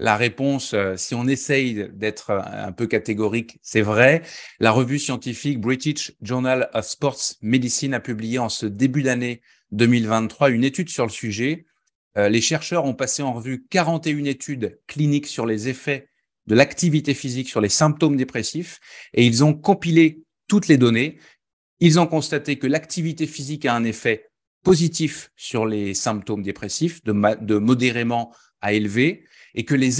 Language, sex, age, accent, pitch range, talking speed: French, male, 30-49, French, 115-155 Hz, 160 wpm